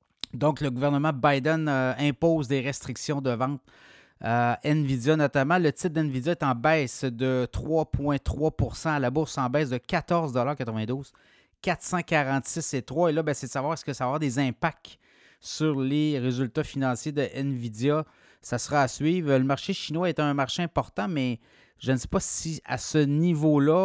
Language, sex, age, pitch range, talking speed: French, male, 30-49, 125-150 Hz, 170 wpm